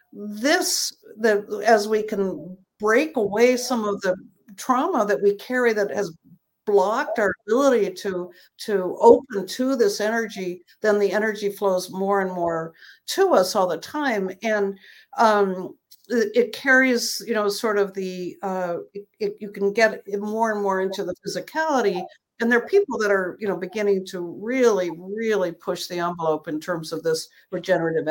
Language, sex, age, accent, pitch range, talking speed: English, female, 60-79, American, 185-240 Hz, 160 wpm